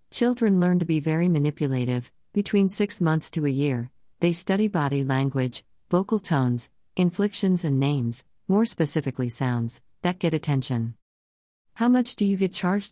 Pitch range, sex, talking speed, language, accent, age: 130-175 Hz, female, 155 wpm, English, American, 50-69